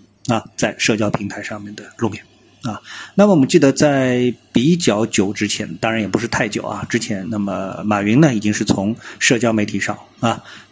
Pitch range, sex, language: 105-120 Hz, male, Chinese